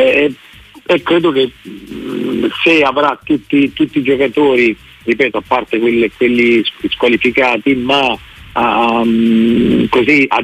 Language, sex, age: Italian, male, 50-69